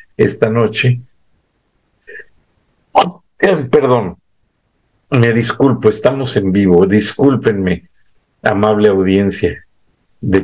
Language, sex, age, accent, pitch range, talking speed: Spanish, male, 50-69, Mexican, 100-135 Hz, 80 wpm